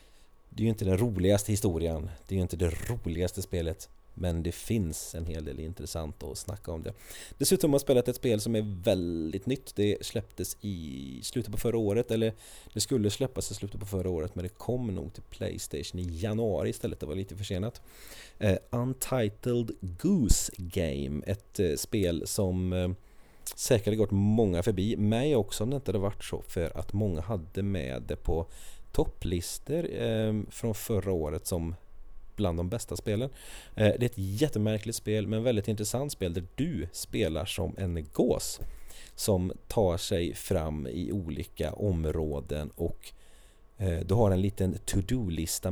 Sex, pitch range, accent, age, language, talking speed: male, 85-110 Hz, Swedish, 30-49, English, 170 wpm